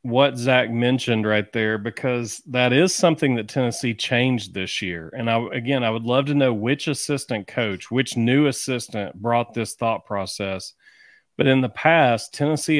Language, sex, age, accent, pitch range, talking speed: English, male, 40-59, American, 115-135 Hz, 175 wpm